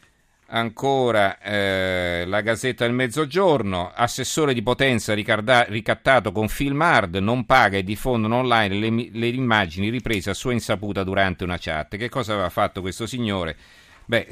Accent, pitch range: native, 90-115 Hz